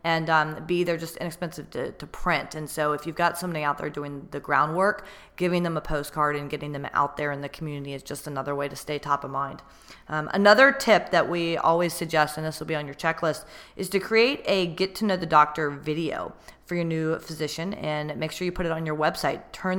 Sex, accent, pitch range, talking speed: female, American, 145-170 Hz, 240 wpm